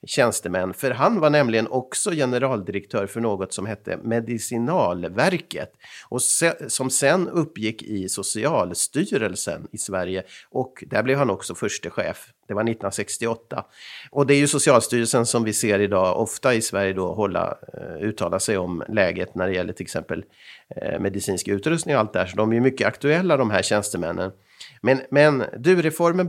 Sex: male